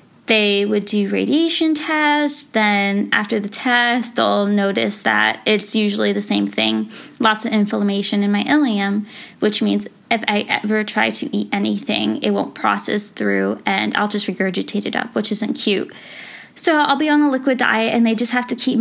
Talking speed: 185 wpm